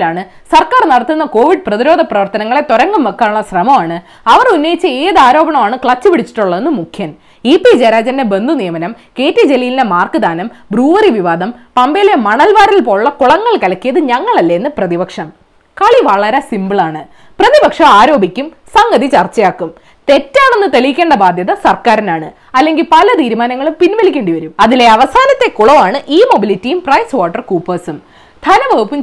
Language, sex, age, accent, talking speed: Malayalam, female, 20-39, native, 120 wpm